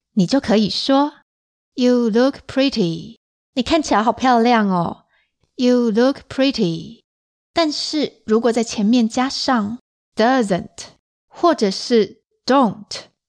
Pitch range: 215-275 Hz